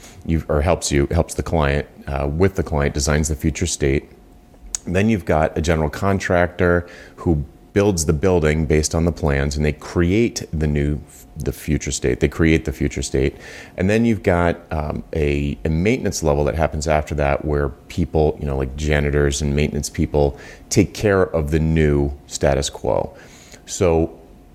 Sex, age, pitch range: male, 30-49, 75-90 Hz